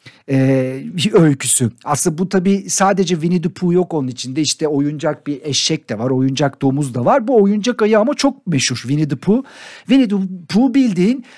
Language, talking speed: Turkish, 190 wpm